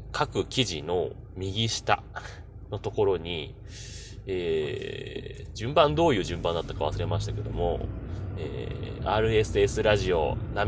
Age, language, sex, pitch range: 30-49, Japanese, male, 95-120 Hz